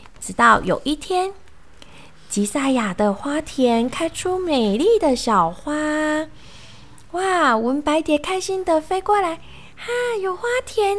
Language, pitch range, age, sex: Chinese, 250-390 Hz, 20-39, female